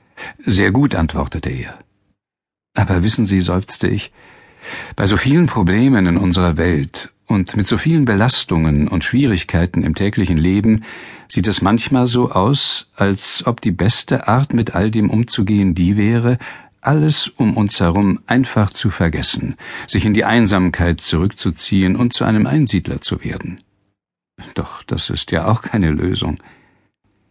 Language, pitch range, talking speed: German, 85-115 Hz, 145 wpm